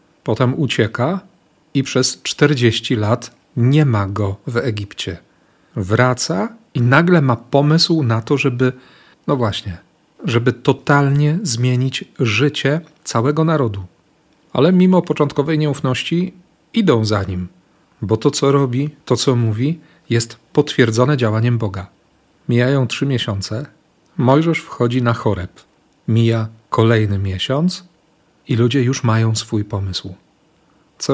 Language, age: Polish, 40-59